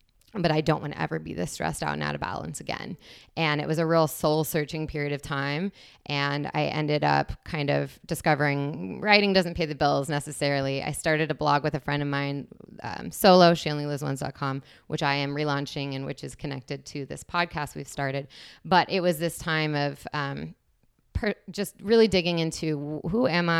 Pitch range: 140-165 Hz